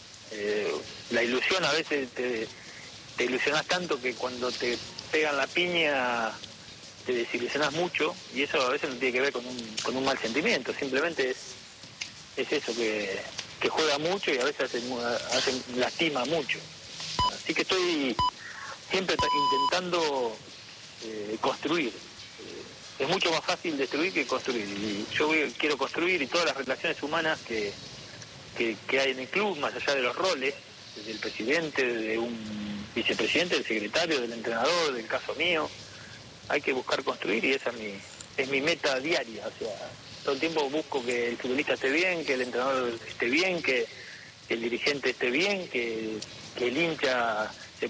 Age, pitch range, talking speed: 40-59, 110-155 Hz, 170 wpm